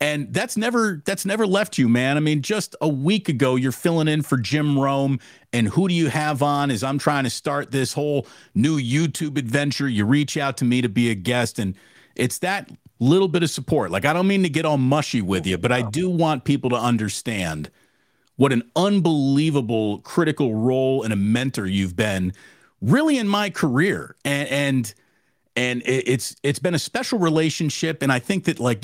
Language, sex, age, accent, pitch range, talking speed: English, male, 40-59, American, 125-160 Hz, 200 wpm